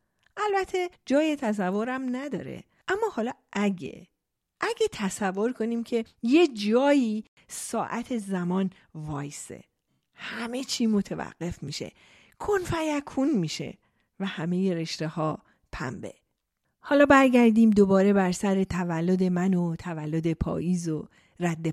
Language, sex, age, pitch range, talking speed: Persian, female, 40-59, 175-265 Hz, 110 wpm